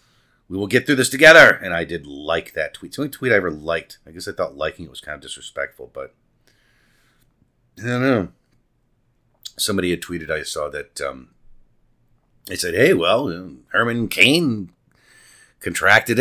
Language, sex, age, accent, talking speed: English, male, 40-59, American, 180 wpm